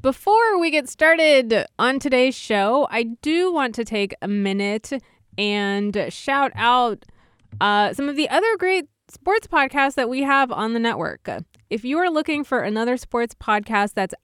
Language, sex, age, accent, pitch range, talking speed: English, female, 20-39, American, 185-250 Hz, 170 wpm